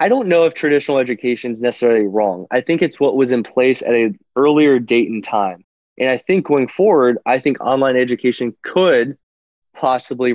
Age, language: 20-39, English